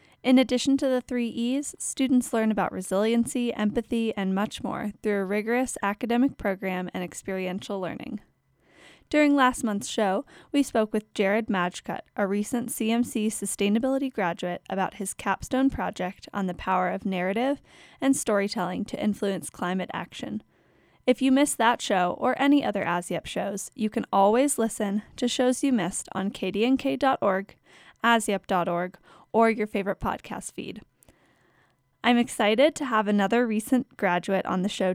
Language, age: English, 10-29